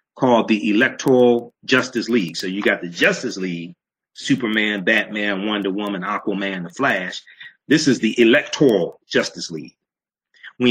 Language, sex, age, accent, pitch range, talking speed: English, male, 40-59, American, 95-120 Hz, 140 wpm